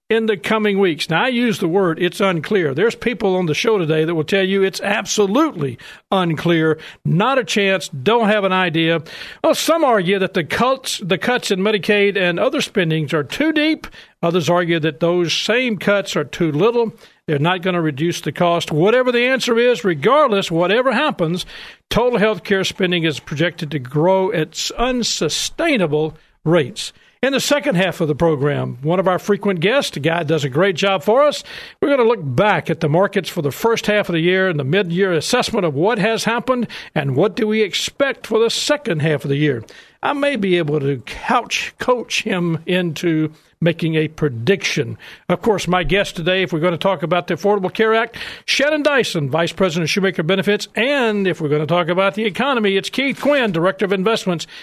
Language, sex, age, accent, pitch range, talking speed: English, male, 50-69, American, 165-230 Hz, 200 wpm